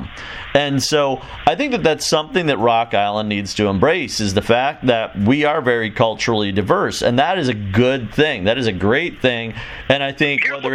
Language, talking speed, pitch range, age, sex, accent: English, 205 wpm, 115-145 Hz, 40-59, male, American